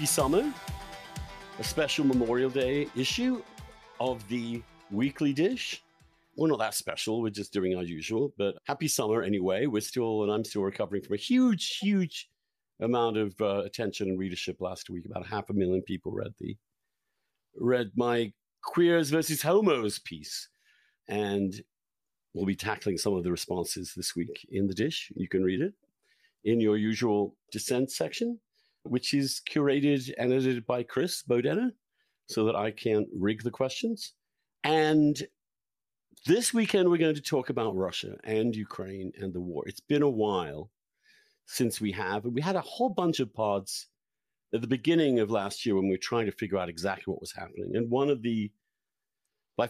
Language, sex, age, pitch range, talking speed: English, male, 50-69, 100-150 Hz, 170 wpm